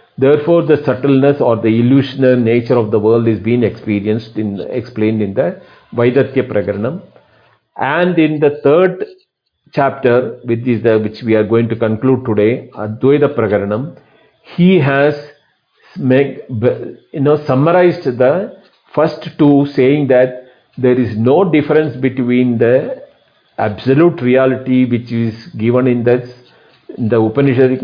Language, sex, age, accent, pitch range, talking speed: English, male, 50-69, Indian, 115-140 Hz, 135 wpm